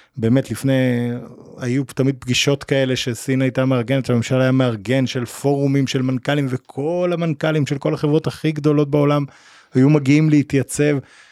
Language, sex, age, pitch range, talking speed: Hebrew, male, 30-49, 115-150 Hz, 145 wpm